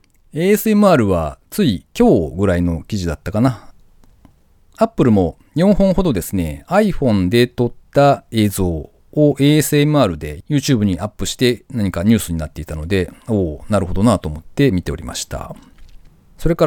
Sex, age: male, 40-59